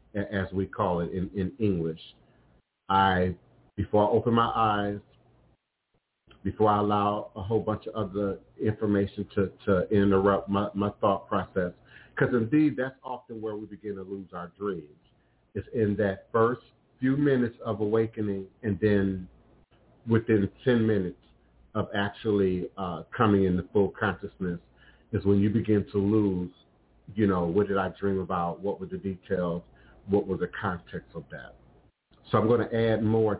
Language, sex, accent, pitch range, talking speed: English, male, American, 95-110 Hz, 160 wpm